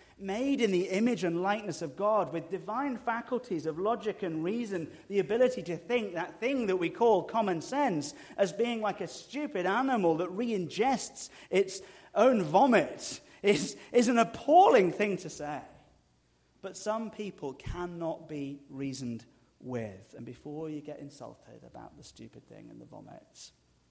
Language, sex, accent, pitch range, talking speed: English, male, British, 130-190 Hz, 160 wpm